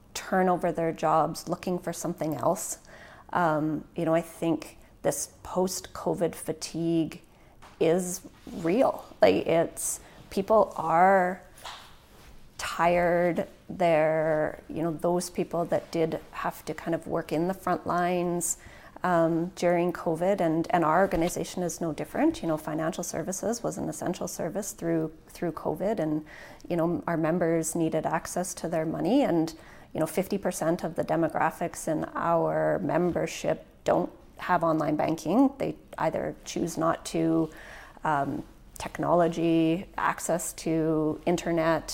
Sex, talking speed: female, 135 wpm